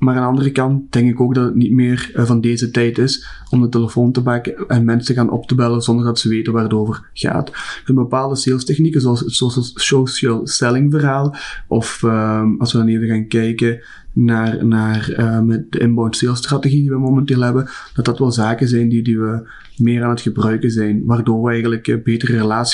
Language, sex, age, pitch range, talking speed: Dutch, male, 30-49, 115-125 Hz, 215 wpm